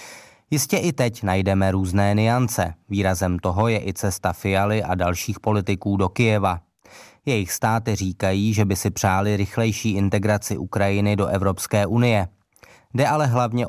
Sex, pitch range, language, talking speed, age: male, 95-110 Hz, Czech, 145 wpm, 20-39